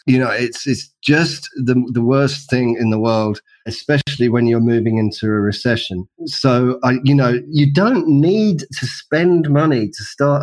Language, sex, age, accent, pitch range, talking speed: English, male, 40-59, British, 125-155 Hz, 180 wpm